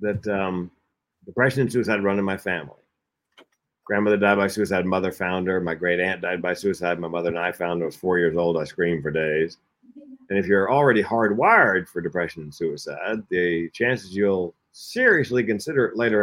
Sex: male